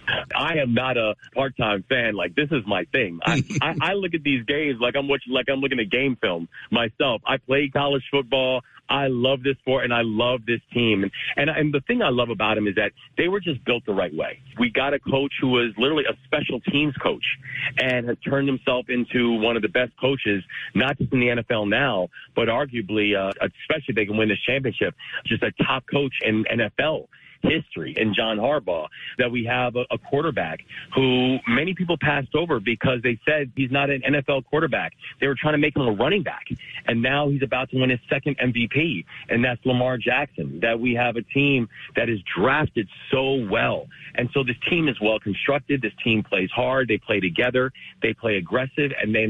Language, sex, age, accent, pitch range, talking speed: English, male, 40-59, American, 115-140 Hz, 215 wpm